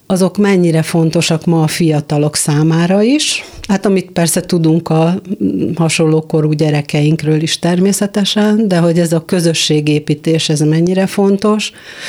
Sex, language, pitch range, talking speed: female, Hungarian, 155-180 Hz, 125 wpm